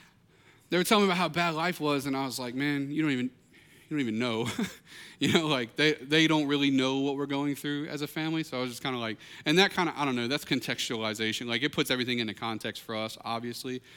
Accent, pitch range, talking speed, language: American, 135-165 Hz, 260 wpm, English